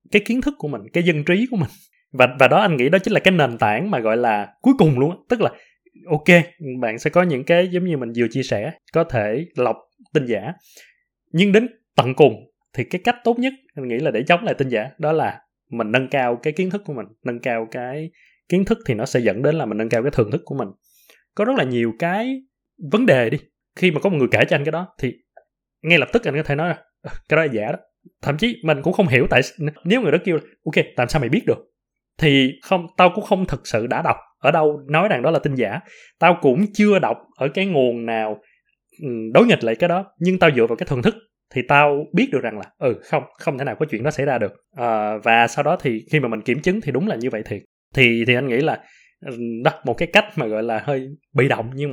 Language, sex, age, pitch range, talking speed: Vietnamese, male, 20-39, 125-185 Hz, 260 wpm